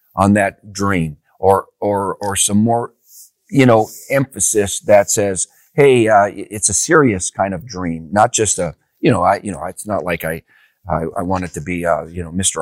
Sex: male